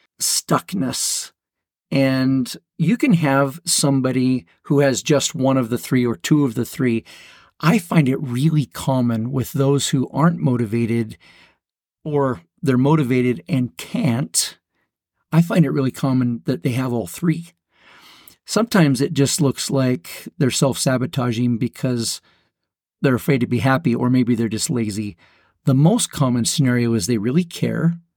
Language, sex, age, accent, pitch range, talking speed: English, male, 40-59, American, 125-155 Hz, 145 wpm